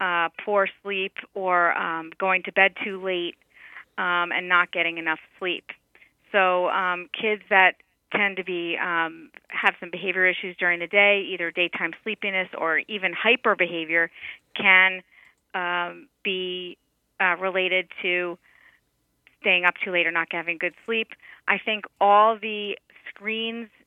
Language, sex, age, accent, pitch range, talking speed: English, female, 40-59, American, 170-200 Hz, 145 wpm